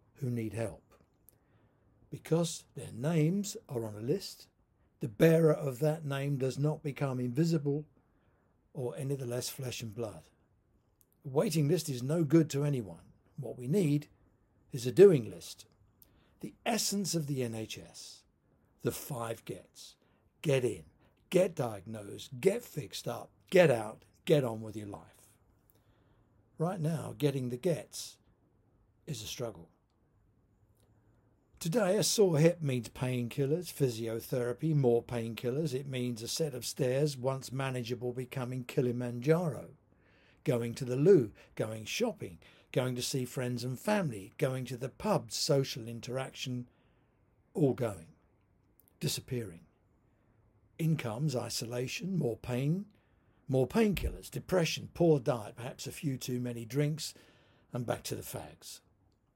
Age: 60-79